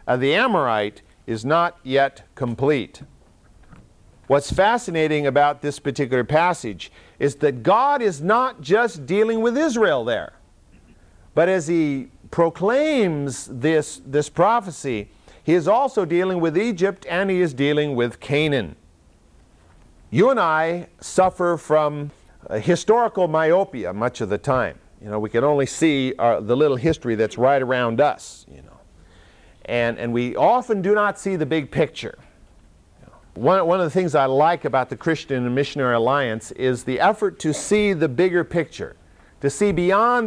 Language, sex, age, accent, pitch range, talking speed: English, male, 50-69, American, 120-175 Hz, 155 wpm